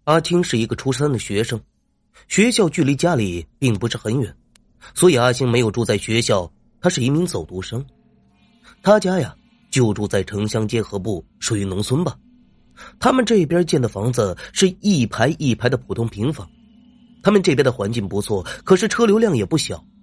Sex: male